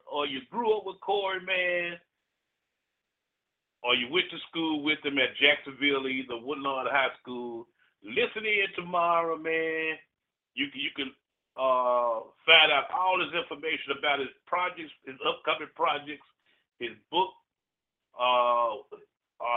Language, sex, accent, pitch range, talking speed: English, male, American, 125-175 Hz, 130 wpm